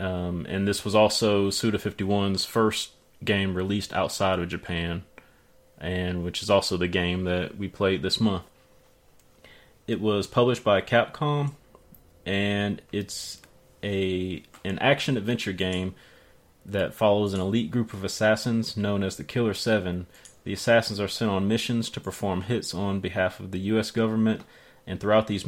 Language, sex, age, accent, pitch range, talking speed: English, male, 30-49, American, 95-110 Hz, 150 wpm